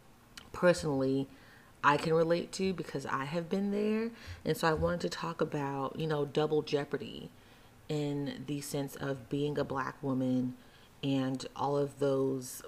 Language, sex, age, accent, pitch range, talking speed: English, female, 30-49, American, 130-155 Hz, 155 wpm